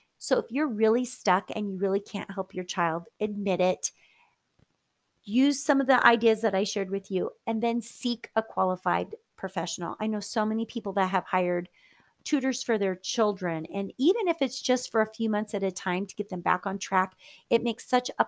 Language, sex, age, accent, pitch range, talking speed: English, female, 30-49, American, 185-235 Hz, 210 wpm